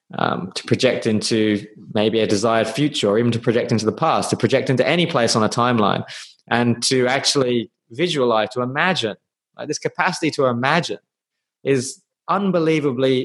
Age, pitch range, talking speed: 20-39, 110-130 Hz, 165 wpm